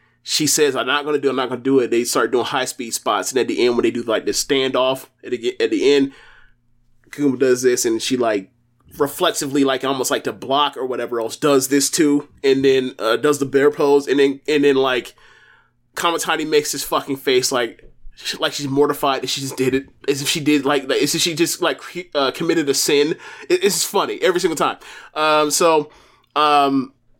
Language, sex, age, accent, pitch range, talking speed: English, male, 20-39, American, 125-170 Hz, 220 wpm